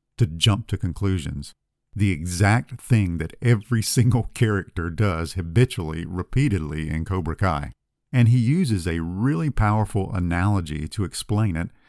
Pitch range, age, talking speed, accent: 85-120 Hz, 50-69, 135 wpm, American